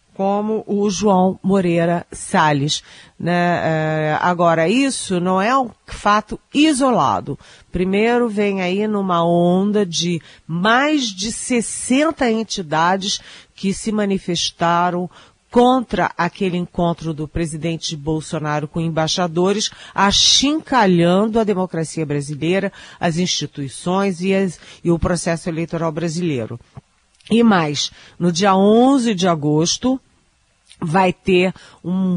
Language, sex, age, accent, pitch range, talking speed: Portuguese, female, 40-59, Brazilian, 155-195 Hz, 105 wpm